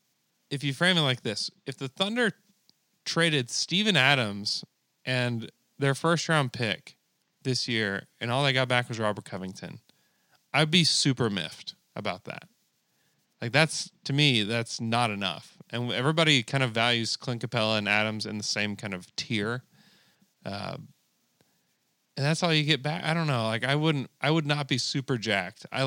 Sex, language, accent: male, English, American